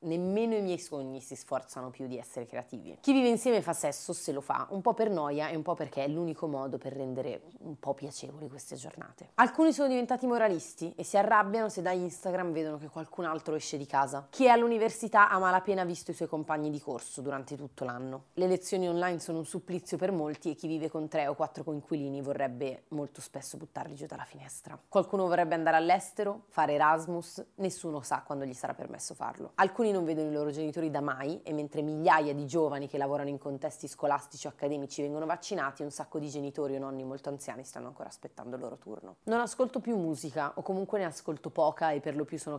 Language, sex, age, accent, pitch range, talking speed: Italian, female, 30-49, native, 140-180 Hz, 215 wpm